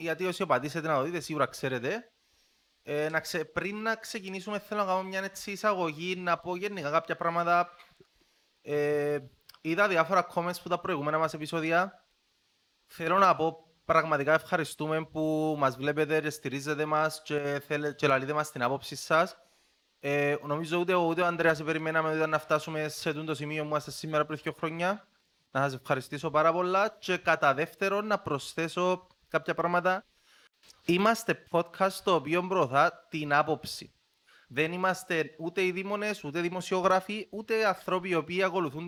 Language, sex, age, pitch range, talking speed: Greek, male, 20-39, 155-195 Hz, 160 wpm